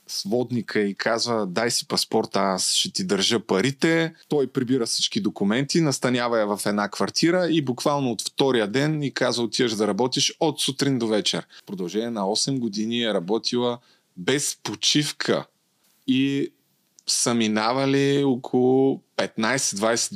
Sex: male